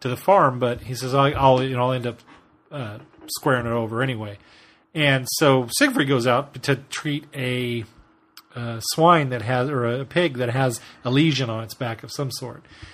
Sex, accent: male, American